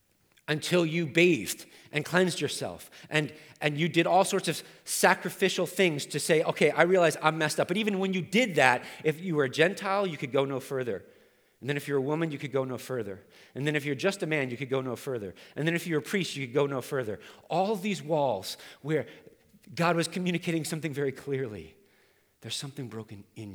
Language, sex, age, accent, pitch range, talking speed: English, male, 40-59, American, 135-175 Hz, 220 wpm